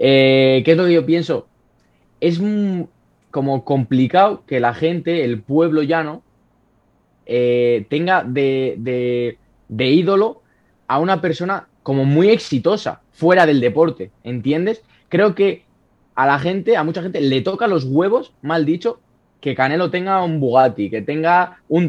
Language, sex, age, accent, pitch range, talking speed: Spanish, male, 20-39, Spanish, 135-180 Hz, 150 wpm